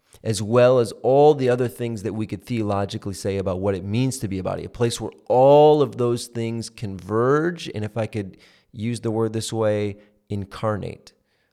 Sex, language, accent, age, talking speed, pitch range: male, English, American, 30-49, 200 wpm, 100-120 Hz